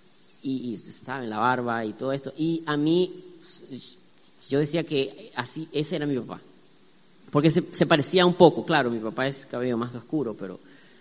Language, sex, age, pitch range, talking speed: Spanish, female, 30-49, 130-170 Hz, 185 wpm